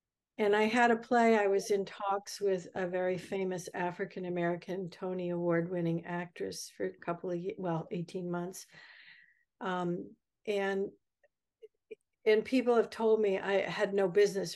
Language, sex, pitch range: English, female, 175-200 Hz